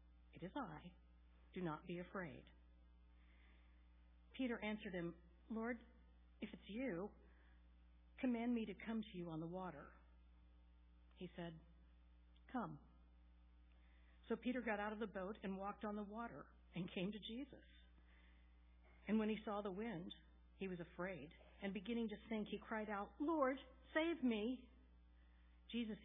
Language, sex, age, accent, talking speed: English, female, 60-79, American, 145 wpm